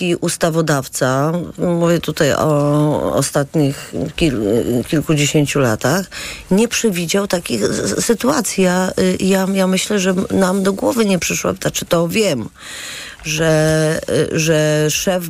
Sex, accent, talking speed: female, native, 100 wpm